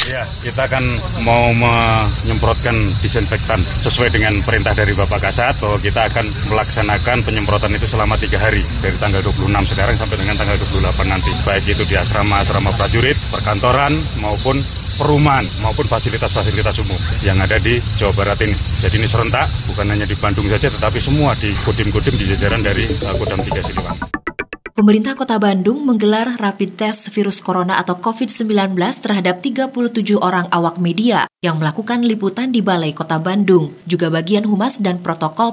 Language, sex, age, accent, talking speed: Indonesian, male, 30-49, native, 155 wpm